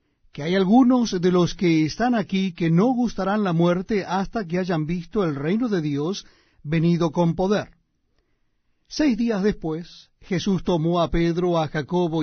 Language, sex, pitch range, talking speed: Spanish, male, 170-215 Hz, 160 wpm